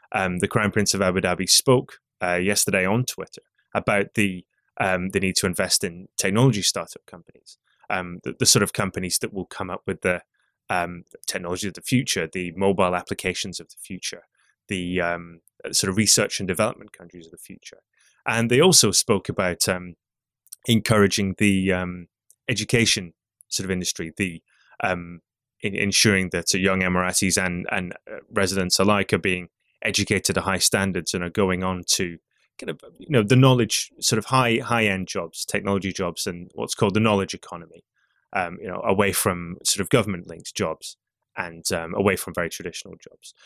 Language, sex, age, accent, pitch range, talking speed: English, male, 20-39, British, 90-105 Hz, 180 wpm